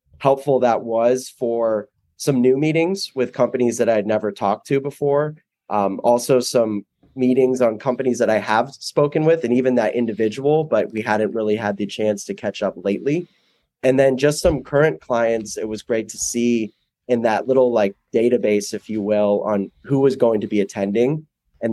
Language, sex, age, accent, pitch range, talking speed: English, male, 20-39, American, 105-130 Hz, 190 wpm